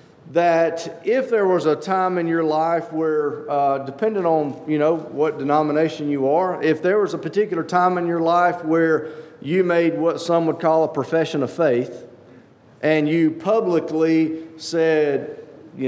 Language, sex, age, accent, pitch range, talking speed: English, male, 40-59, American, 145-175 Hz, 165 wpm